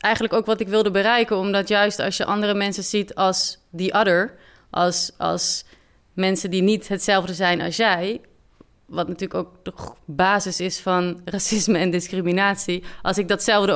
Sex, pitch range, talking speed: female, 185-220 Hz, 165 wpm